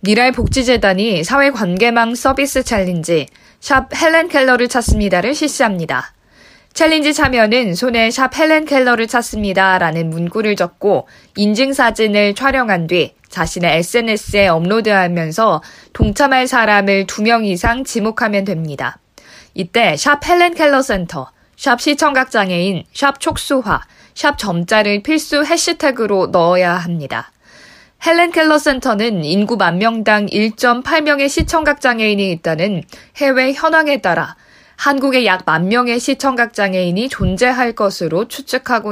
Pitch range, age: 190-270 Hz, 20-39